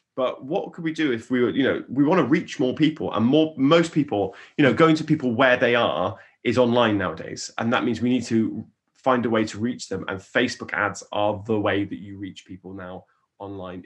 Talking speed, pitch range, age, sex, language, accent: 240 wpm, 100-125 Hz, 30-49, male, English, British